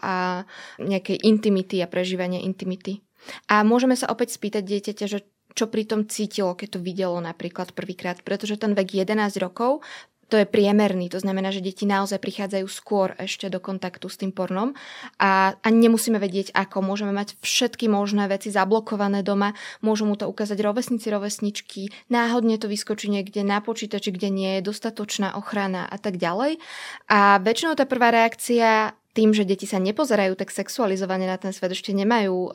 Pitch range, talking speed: 190-215 Hz, 165 wpm